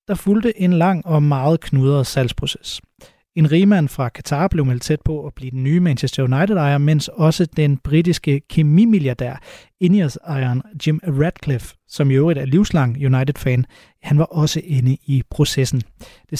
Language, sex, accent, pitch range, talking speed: Danish, male, native, 140-175 Hz, 160 wpm